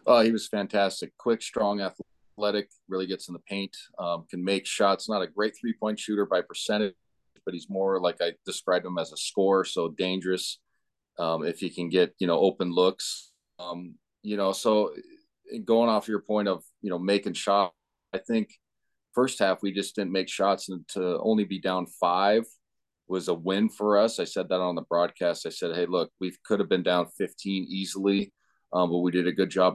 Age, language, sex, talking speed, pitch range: 40-59, English, male, 205 wpm, 90-100 Hz